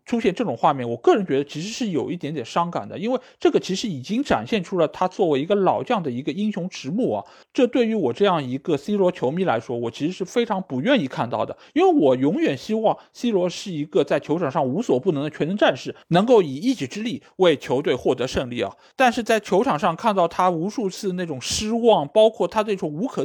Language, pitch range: Chinese, 165-245 Hz